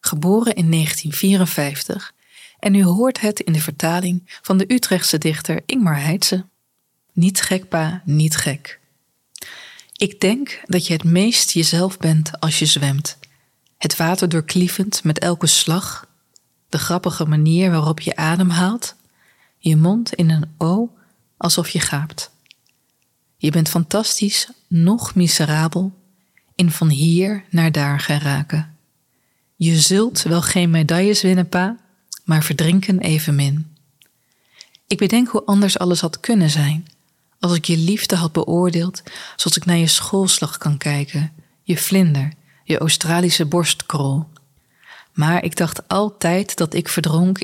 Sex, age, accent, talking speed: female, 20-39, Dutch, 135 wpm